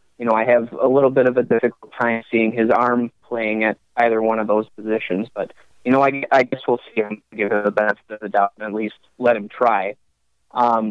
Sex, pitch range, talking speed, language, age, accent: male, 110-125 Hz, 240 wpm, English, 20-39, American